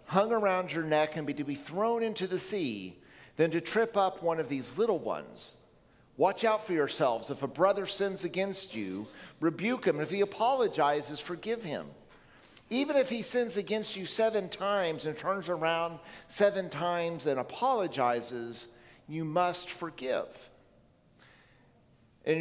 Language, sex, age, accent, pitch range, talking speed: English, male, 50-69, American, 145-200 Hz, 155 wpm